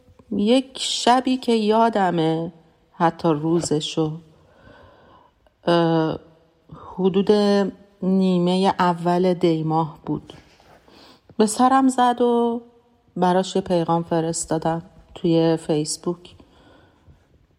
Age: 40-59